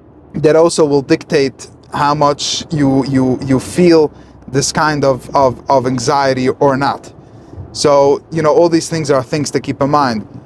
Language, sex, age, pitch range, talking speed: English, male, 20-39, 135-160 Hz, 170 wpm